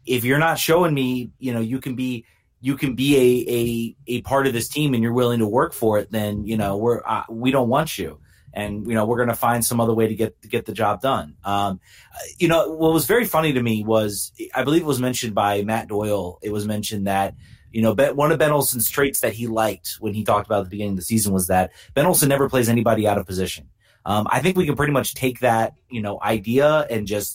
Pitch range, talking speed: 105-135 Hz, 260 wpm